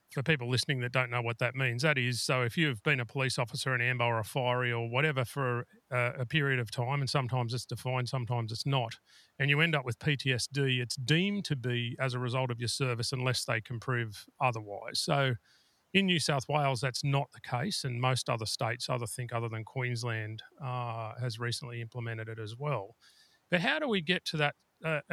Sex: male